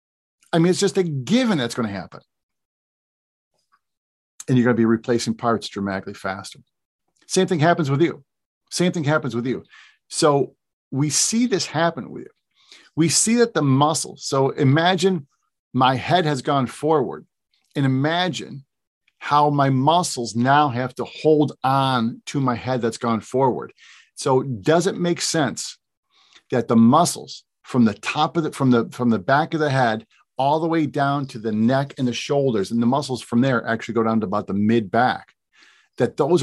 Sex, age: male, 50-69